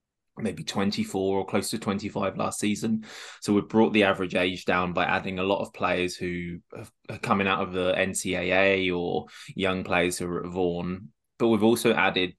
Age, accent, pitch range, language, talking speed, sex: 20-39, British, 90-110 Hz, English, 190 wpm, male